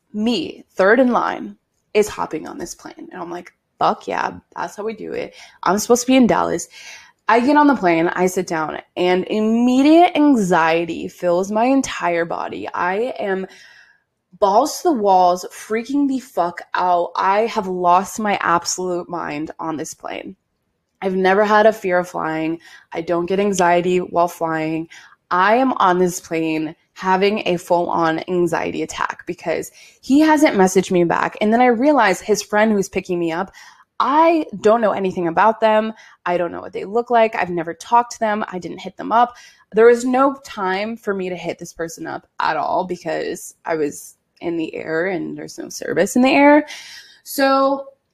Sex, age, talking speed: female, 20-39, 185 wpm